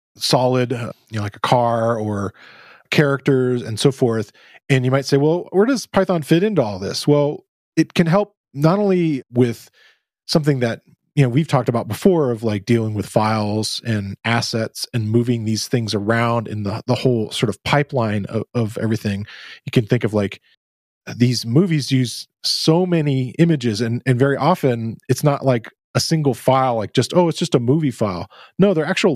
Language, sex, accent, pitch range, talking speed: English, male, American, 110-140 Hz, 190 wpm